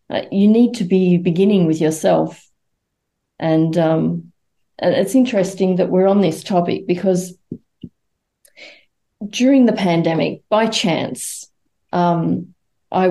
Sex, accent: female, Australian